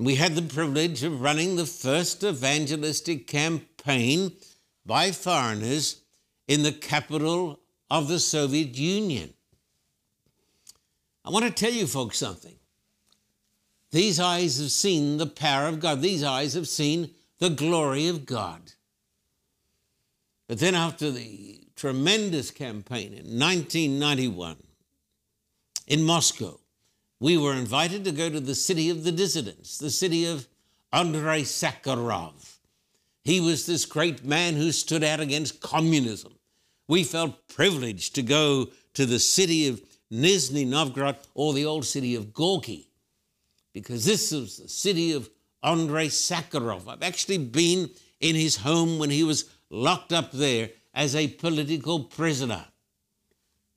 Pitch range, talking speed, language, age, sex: 125-165 Hz, 135 wpm, English, 60-79, male